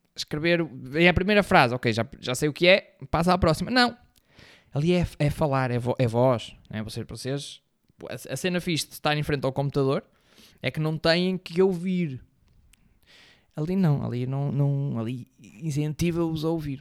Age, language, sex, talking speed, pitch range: 20-39, Portuguese, male, 180 wpm, 135-200 Hz